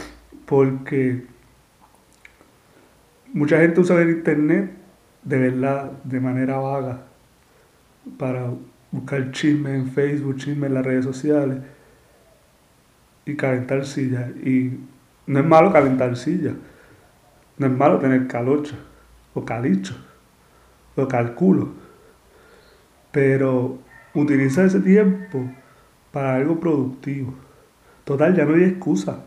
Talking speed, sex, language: 105 wpm, male, Spanish